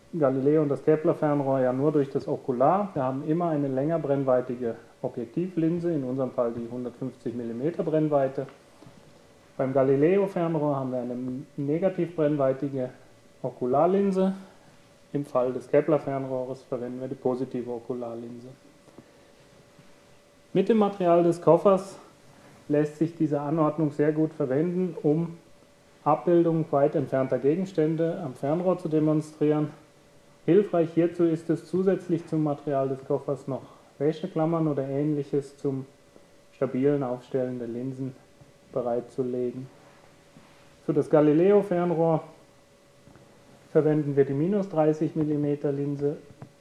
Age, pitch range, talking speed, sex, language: 30-49, 135-165 Hz, 115 wpm, male, German